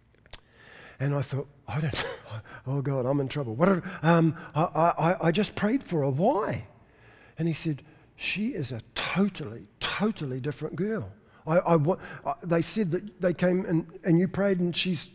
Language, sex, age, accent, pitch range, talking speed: English, male, 50-69, Australian, 130-180 Hz, 180 wpm